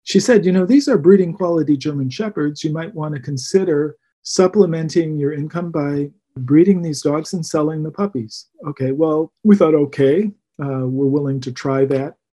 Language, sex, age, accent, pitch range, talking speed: English, male, 50-69, American, 145-170 Hz, 180 wpm